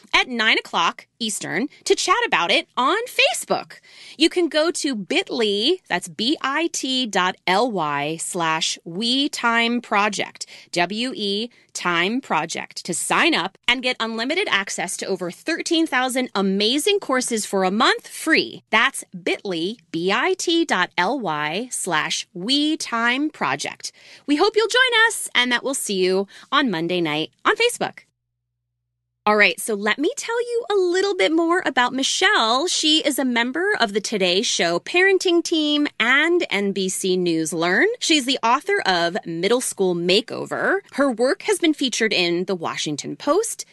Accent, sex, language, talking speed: American, female, English, 150 wpm